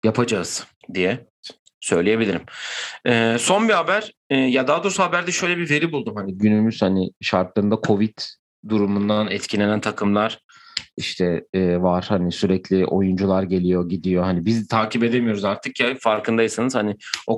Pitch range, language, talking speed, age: 100-130 Hz, Turkish, 140 wpm, 40-59